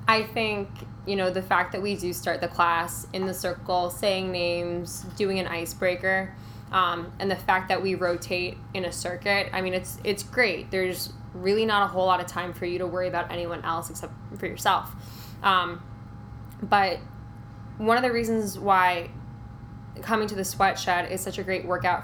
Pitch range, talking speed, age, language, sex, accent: 120-195 Hz, 190 wpm, 10-29, English, female, American